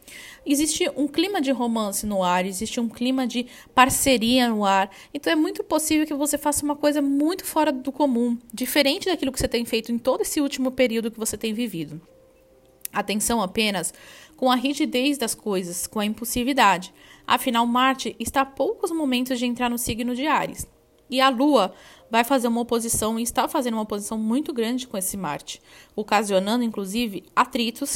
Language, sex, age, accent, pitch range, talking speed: Portuguese, female, 10-29, Brazilian, 220-280 Hz, 180 wpm